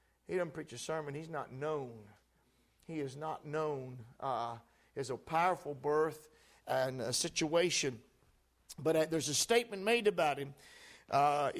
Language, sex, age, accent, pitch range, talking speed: English, male, 50-69, American, 160-235 Hz, 150 wpm